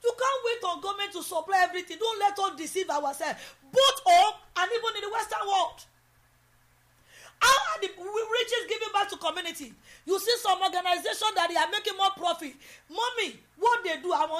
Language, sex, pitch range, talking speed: English, female, 340-455 Hz, 180 wpm